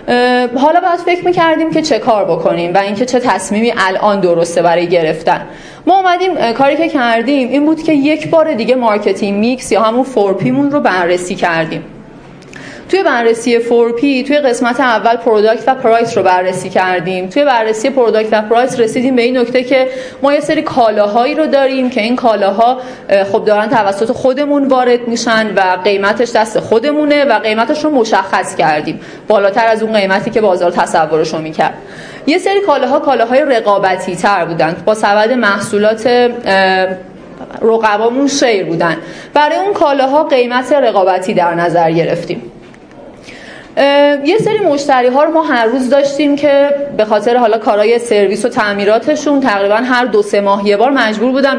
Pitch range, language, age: 200-270 Hz, Persian, 30-49